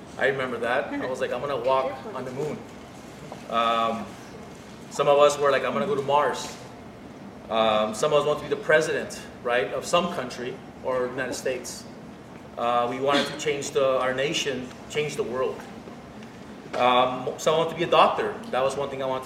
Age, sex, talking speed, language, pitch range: 30-49, male, 205 wpm, English, 125-165 Hz